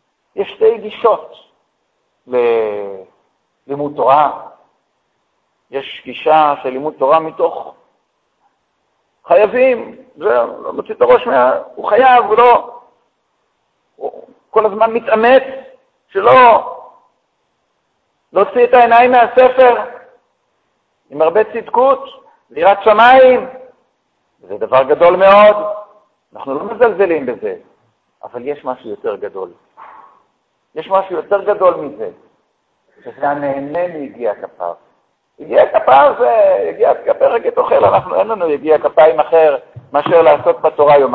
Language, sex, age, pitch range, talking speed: Hebrew, male, 60-79, 160-260 Hz, 95 wpm